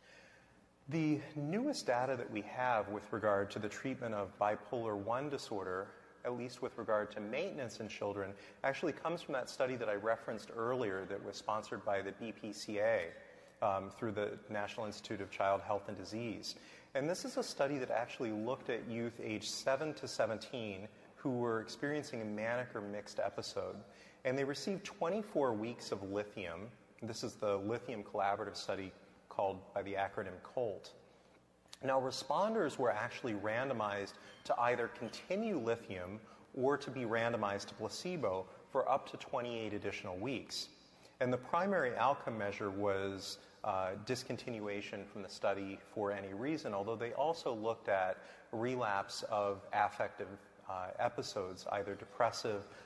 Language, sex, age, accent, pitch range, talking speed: English, male, 30-49, American, 100-120 Hz, 155 wpm